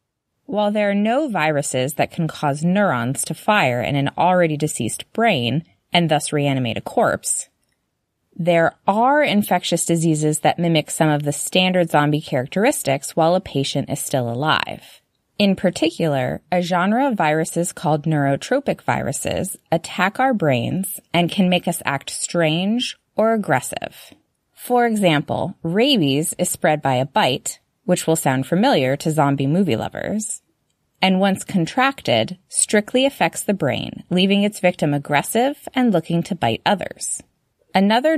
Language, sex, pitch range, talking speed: English, female, 150-205 Hz, 145 wpm